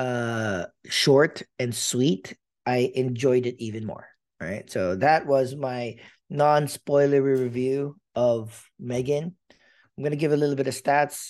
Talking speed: 145 wpm